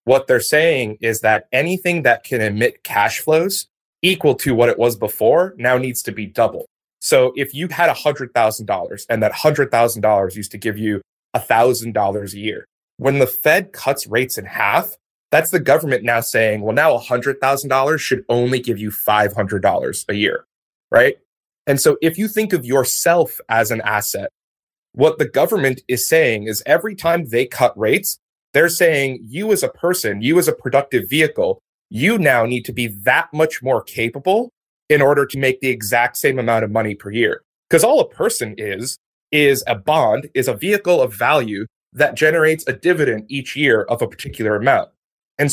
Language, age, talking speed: English, 30-49, 180 wpm